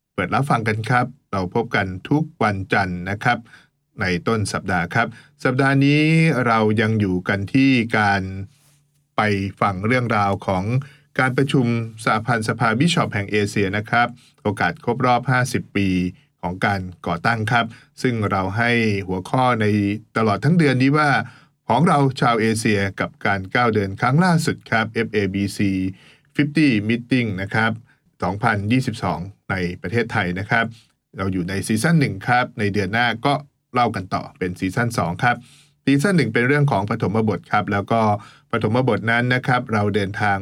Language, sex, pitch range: English, male, 100-130 Hz